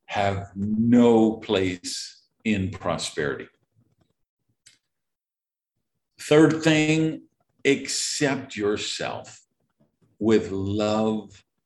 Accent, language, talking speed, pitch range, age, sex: American, English, 55 wpm, 110-160 Hz, 50-69, male